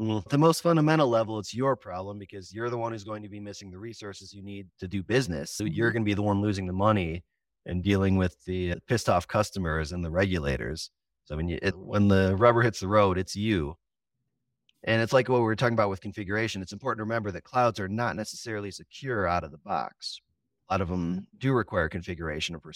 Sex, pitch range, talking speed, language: male, 90-115 Hz, 230 wpm, English